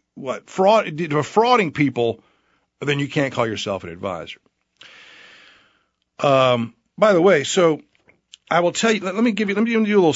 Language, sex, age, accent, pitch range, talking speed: English, male, 50-69, American, 125-190 Hz, 175 wpm